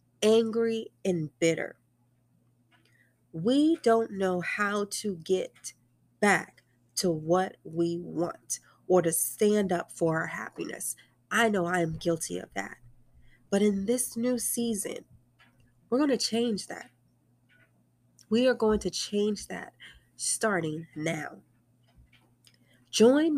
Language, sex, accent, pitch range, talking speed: English, female, American, 125-205 Hz, 120 wpm